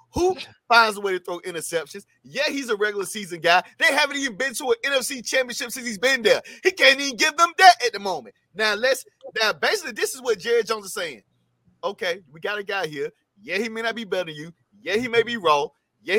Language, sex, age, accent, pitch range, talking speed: English, male, 30-49, American, 180-265 Hz, 240 wpm